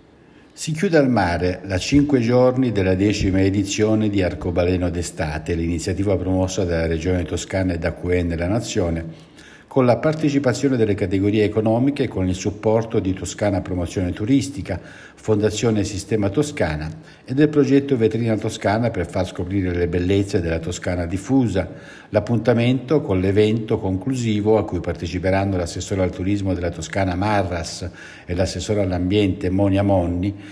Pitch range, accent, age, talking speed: 90-115 Hz, native, 60-79, 140 wpm